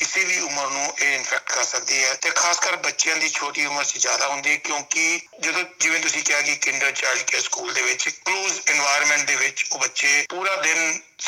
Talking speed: 200 wpm